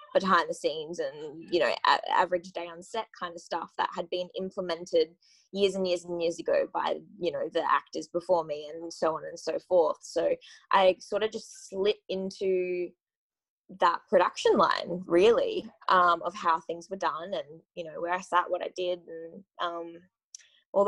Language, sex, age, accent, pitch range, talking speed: English, female, 20-39, Australian, 170-225 Hz, 185 wpm